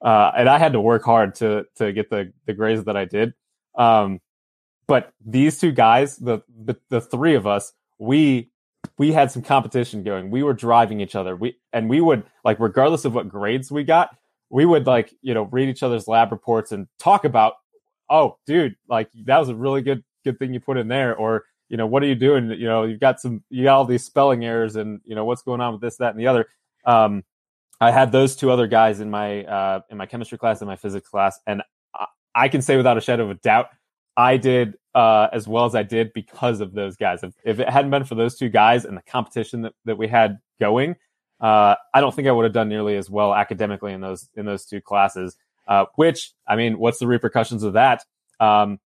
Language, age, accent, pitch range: English, 20-39, American, 105-130 Hz